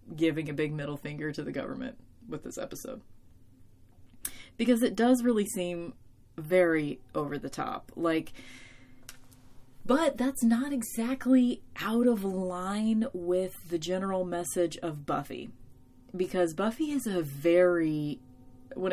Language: English